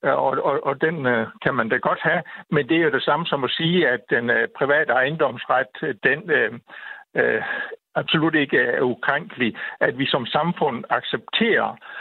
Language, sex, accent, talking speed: Danish, male, native, 180 wpm